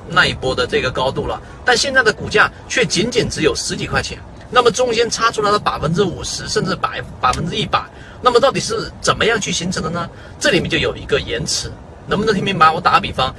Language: Chinese